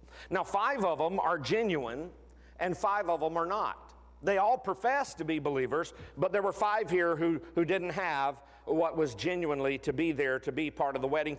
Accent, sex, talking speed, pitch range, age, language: American, male, 205 wpm, 140-195 Hz, 50-69, English